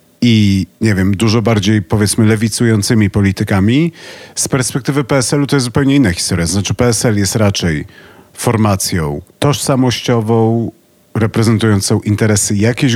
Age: 40-59